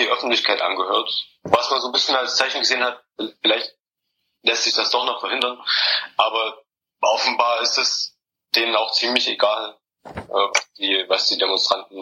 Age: 30-49